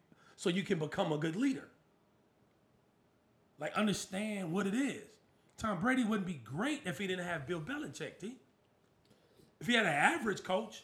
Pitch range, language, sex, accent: 115-175 Hz, English, male, American